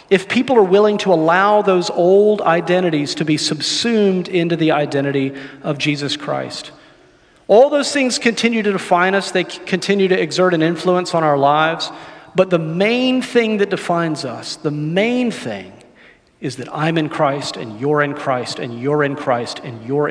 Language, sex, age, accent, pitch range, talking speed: English, male, 40-59, American, 145-185 Hz, 175 wpm